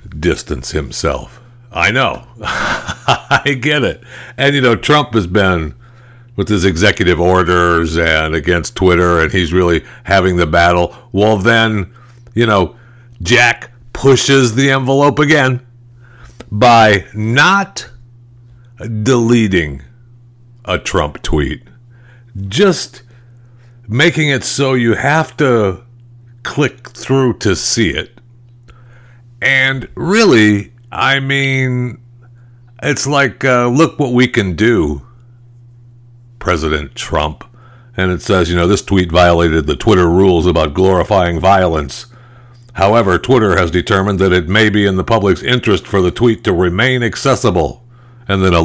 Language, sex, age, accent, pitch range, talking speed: English, male, 60-79, American, 90-120 Hz, 125 wpm